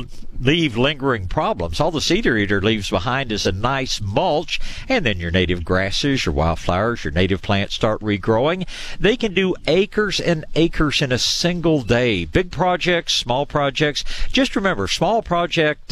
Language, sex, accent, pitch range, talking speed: English, male, American, 100-155 Hz, 160 wpm